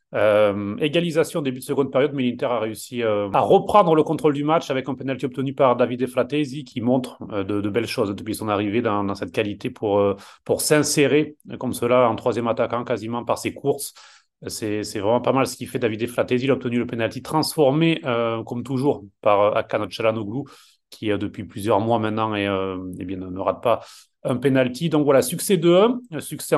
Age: 30-49